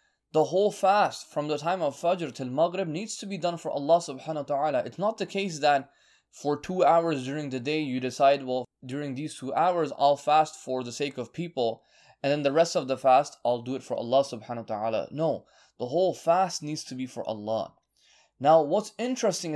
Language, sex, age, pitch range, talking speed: English, male, 20-39, 130-180 Hz, 220 wpm